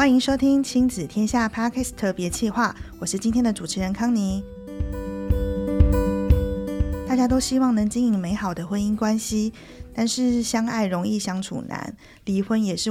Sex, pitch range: female, 175-230 Hz